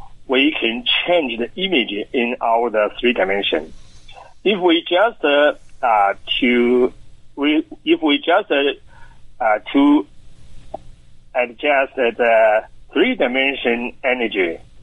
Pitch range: 105-145 Hz